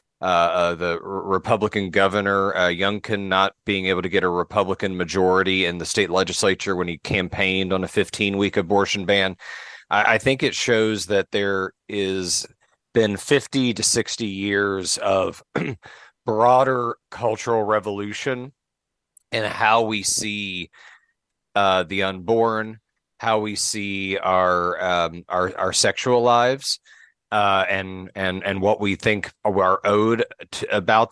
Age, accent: 30-49, American